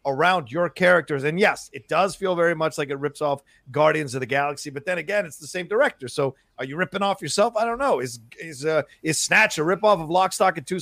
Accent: American